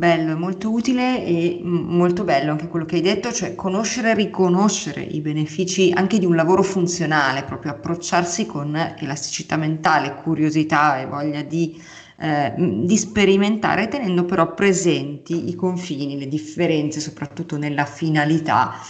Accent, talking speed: native, 140 wpm